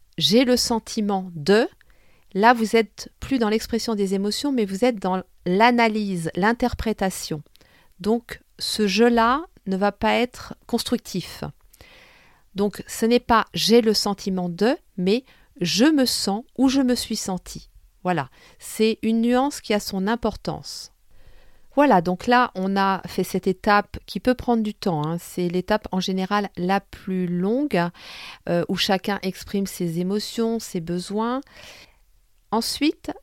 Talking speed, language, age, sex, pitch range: 160 wpm, French, 50-69, female, 185-230 Hz